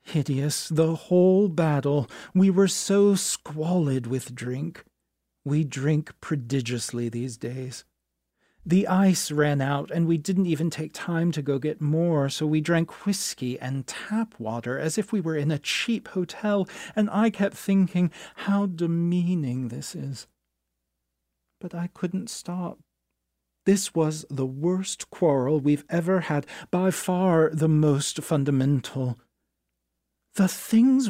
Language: English